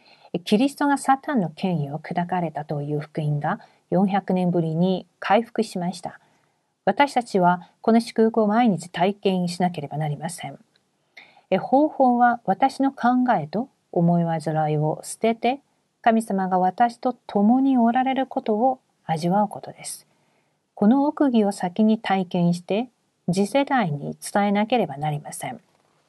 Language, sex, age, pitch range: Korean, female, 40-59, 175-230 Hz